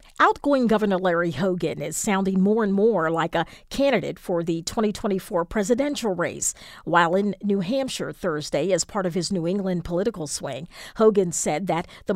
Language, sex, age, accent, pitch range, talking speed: English, female, 40-59, American, 170-220 Hz, 170 wpm